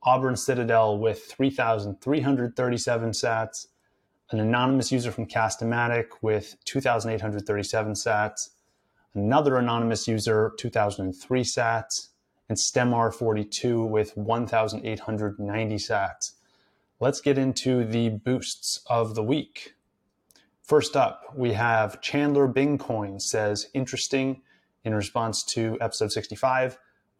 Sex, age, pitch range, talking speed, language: male, 30-49, 110-130 Hz, 95 wpm, English